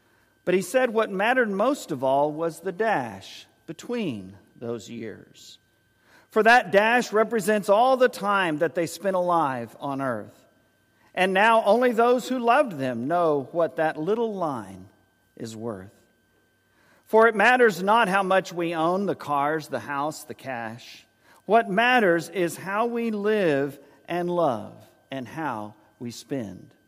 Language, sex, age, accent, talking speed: English, male, 50-69, American, 150 wpm